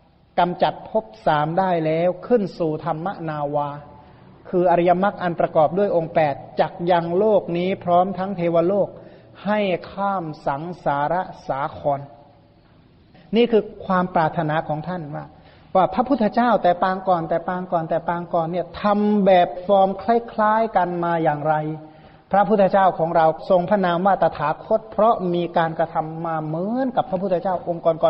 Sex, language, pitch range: male, Thai, 160-190 Hz